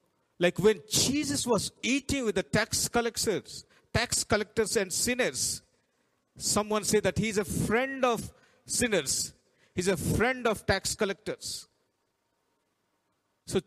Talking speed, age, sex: 130 wpm, 50-69, male